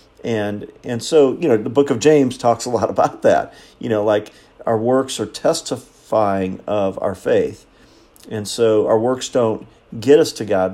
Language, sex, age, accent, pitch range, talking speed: English, male, 50-69, American, 100-115 Hz, 185 wpm